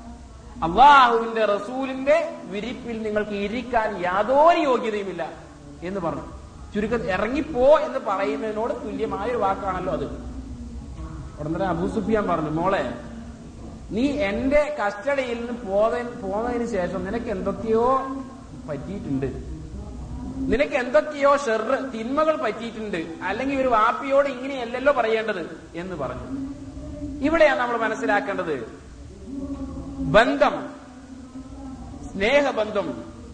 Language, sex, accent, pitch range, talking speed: Malayalam, male, native, 205-270 Hz, 85 wpm